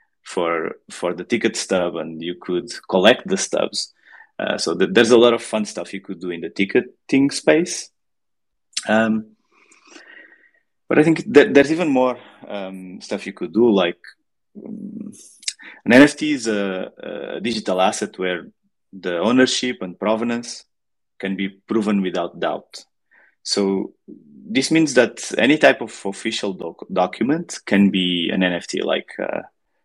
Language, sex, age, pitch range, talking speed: English, male, 30-49, 95-125 Hz, 150 wpm